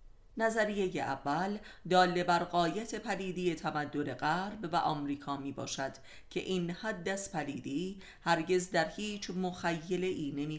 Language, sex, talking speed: Persian, female, 125 wpm